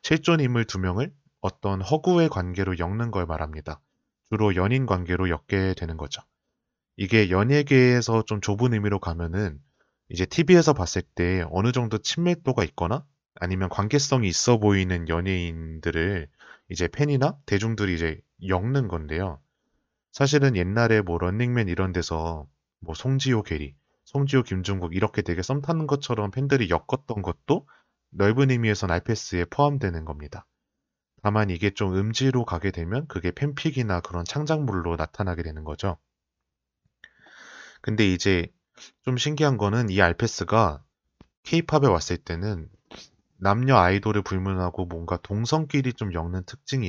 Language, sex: Korean, male